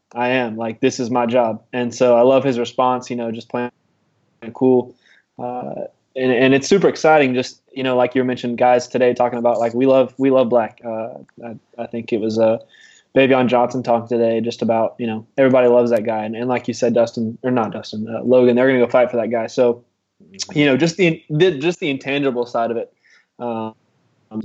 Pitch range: 120-130 Hz